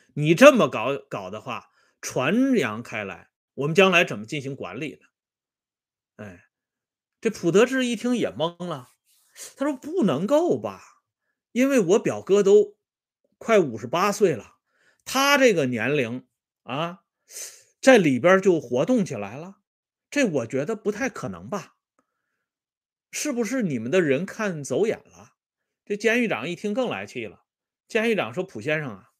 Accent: Chinese